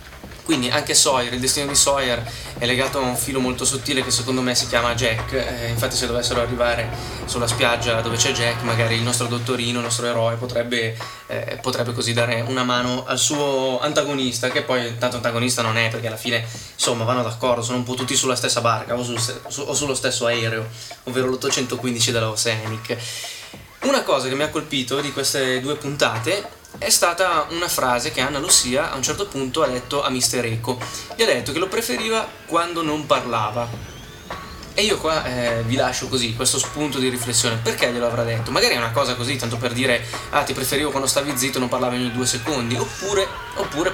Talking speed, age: 205 wpm, 20-39